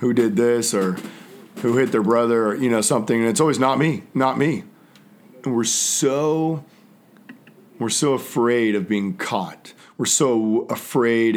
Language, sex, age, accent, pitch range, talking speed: English, male, 40-59, American, 105-140 Hz, 165 wpm